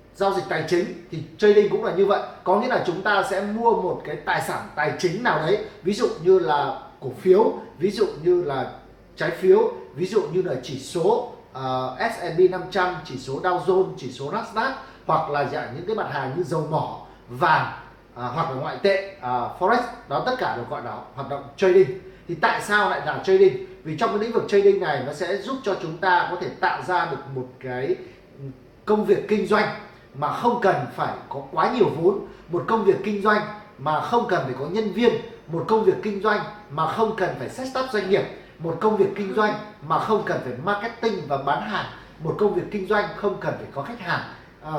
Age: 20-39